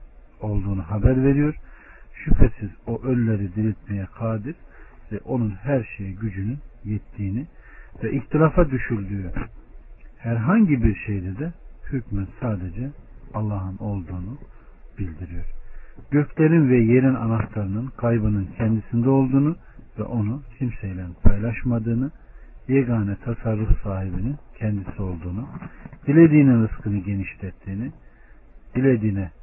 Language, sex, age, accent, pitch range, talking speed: Turkish, male, 50-69, native, 100-135 Hz, 95 wpm